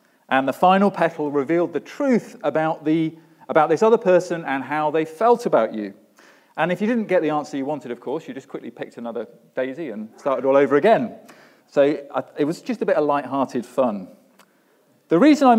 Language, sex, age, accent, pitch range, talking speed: English, male, 40-59, British, 125-205 Hz, 205 wpm